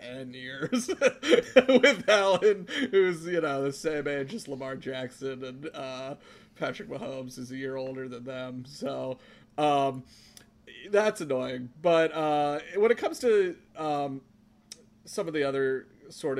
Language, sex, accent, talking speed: English, male, American, 145 wpm